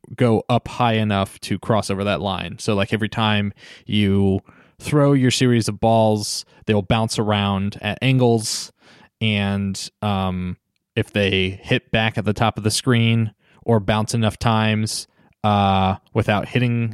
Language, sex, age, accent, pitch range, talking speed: English, male, 20-39, American, 100-115 Hz, 155 wpm